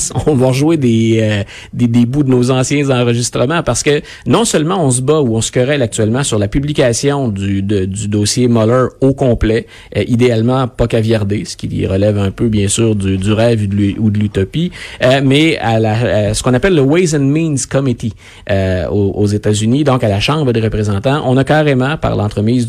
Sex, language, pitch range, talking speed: male, French, 110-140 Hz, 210 wpm